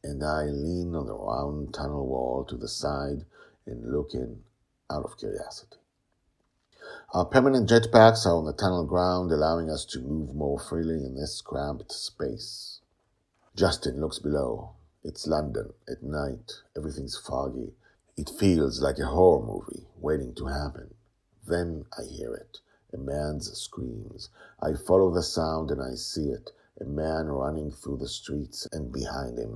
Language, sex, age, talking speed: English, male, 50-69, 155 wpm